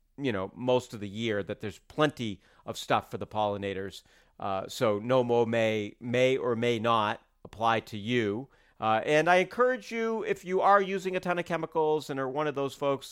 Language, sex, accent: English, male, American